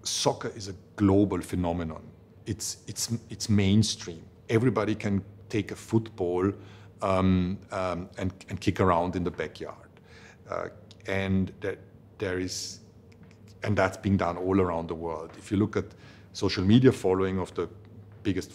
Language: English